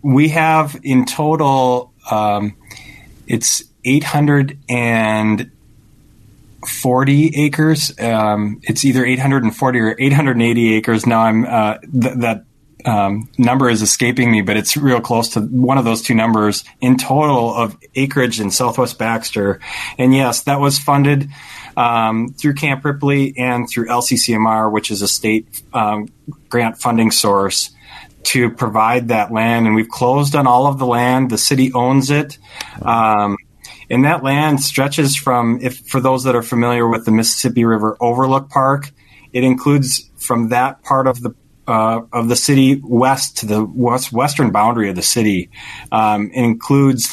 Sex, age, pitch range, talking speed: male, 20-39, 110-135 Hz, 150 wpm